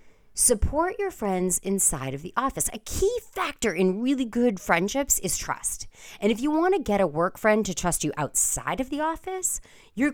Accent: American